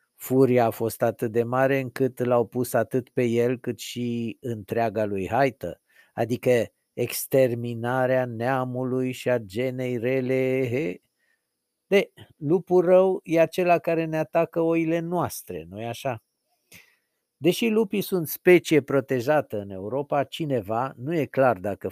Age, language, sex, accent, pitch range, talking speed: 50-69, Romanian, male, native, 115-150 Hz, 130 wpm